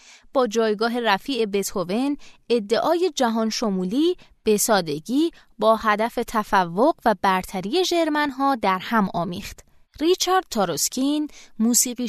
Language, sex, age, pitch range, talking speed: Persian, female, 20-39, 200-300 Hz, 105 wpm